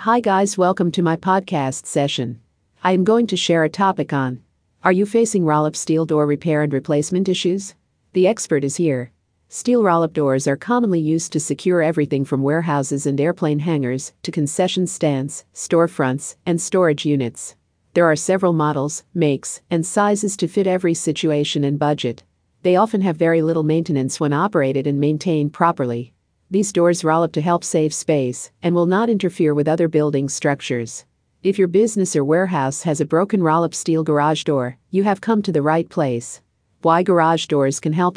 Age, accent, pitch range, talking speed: 50-69, American, 145-180 Hz, 180 wpm